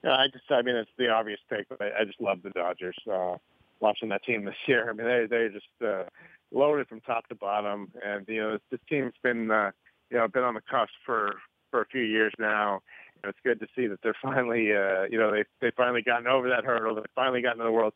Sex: male